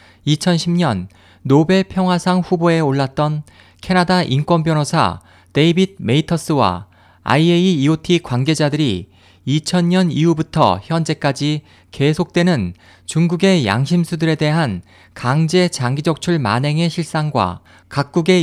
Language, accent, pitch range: Korean, native, 105-175 Hz